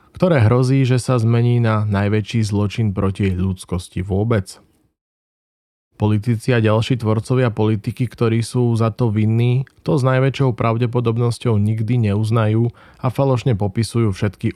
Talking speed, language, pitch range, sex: 130 wpm, Slovak, 100-125 Hz, male